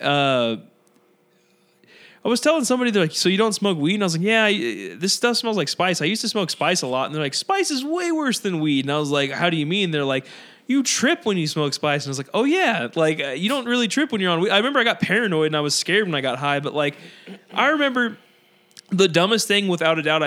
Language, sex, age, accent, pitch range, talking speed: English, male, 20-39, American, 145-210 Hz, 275 wpm